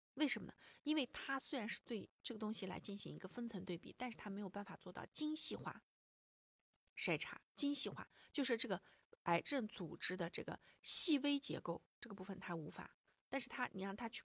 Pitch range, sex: 185-270 Hz, female